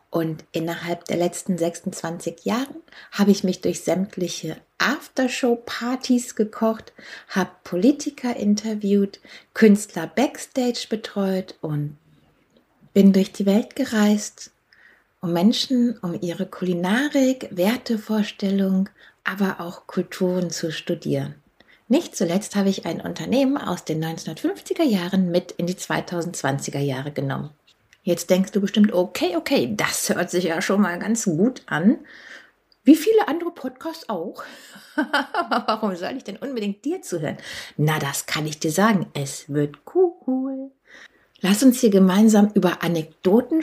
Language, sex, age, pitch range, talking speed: German, female, 60-79, 175-245 Hz, 130 wpm